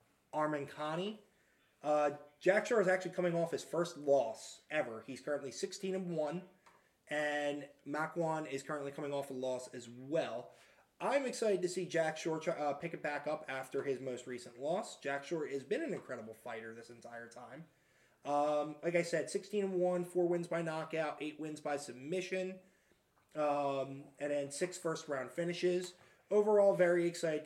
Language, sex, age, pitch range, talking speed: English, male, 20-39, 135-170 Hz, 165 wpm